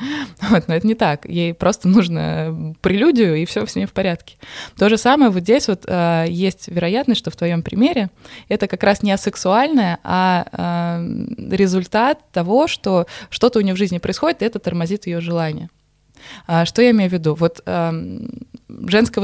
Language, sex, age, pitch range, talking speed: Russian, female, 20-39, 165-210 Hz, 180 wpm